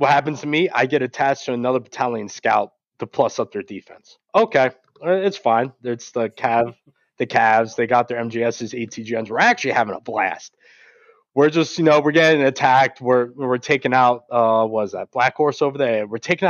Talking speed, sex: 200 wpm, male